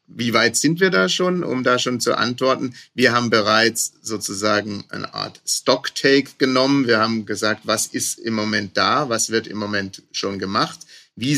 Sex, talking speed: male, 180 wpm